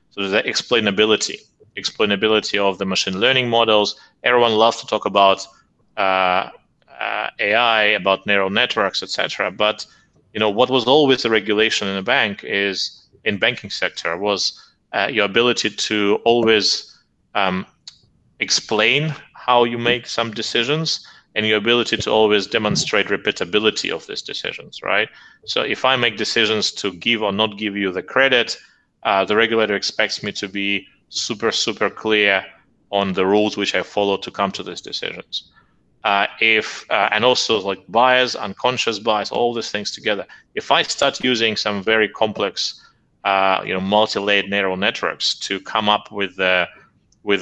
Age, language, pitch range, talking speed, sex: 30-49, English, 100-115 Hz, 160 wpm, male